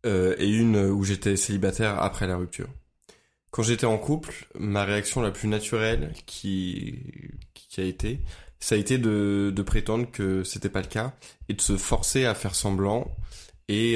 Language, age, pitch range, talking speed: French, 20-39, 100-115 Hz, 180 wpm